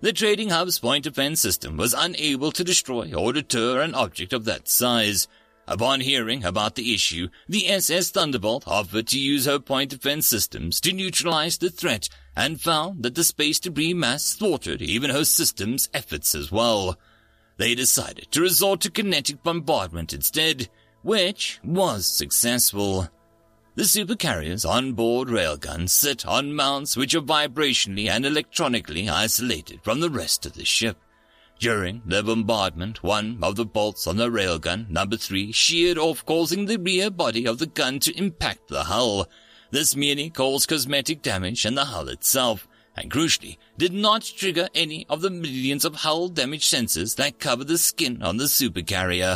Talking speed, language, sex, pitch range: 160 wpm, English, male, 110-160 Hz